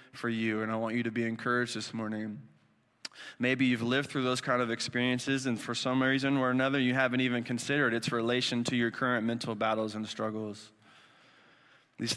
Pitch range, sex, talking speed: 120-150 Hz, male, 190 wpm